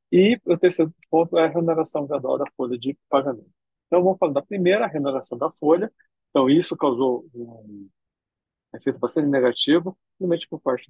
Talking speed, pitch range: 165 wpm, 120-160 Hz